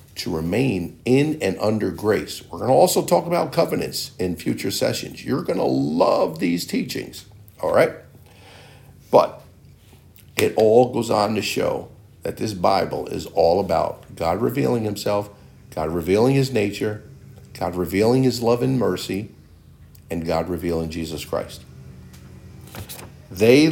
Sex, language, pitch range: male, English, 80-120 Hz